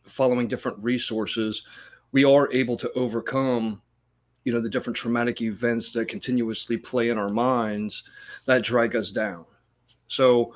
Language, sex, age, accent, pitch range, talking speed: English, male, 30-49, American, 110-125 Hz, 140 wpm